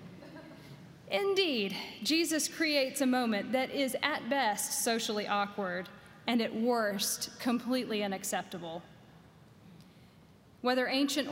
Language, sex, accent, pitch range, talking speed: English, female, American, 220-265 Hz, 95 wpm